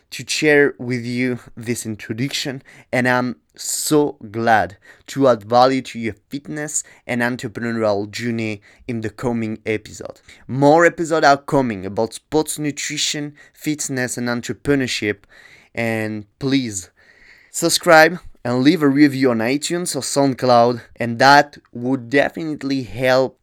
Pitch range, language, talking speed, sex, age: 110-140 Hz, English, 125 wpm, male, 20-39